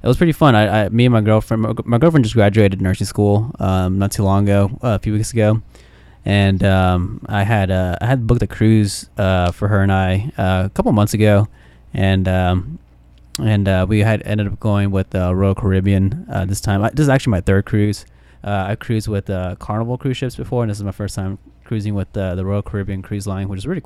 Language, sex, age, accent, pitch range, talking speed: English, male, 20-39, American, 95-110 Hz, 245 wpm